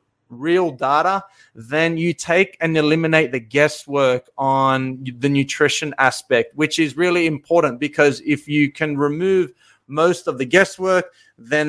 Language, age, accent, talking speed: English, 20-39, Australian, 140 wpm